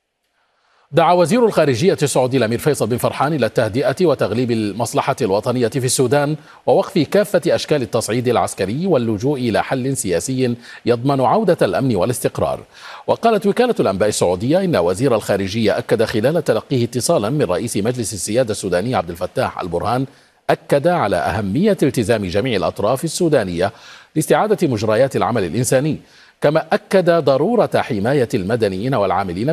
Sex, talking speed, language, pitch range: male, 130 wpm, Arabic, 115-170 Hz